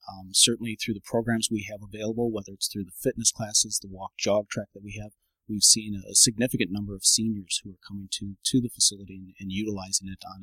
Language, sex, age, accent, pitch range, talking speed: English, male, 30-49, American, 100-115 Hz, 235 wpm